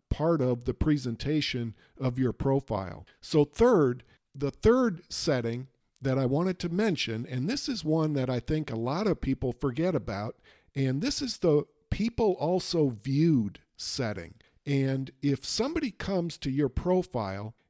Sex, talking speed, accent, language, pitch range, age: male, 155 wpm, American, English, 130-175 Hz, 50-69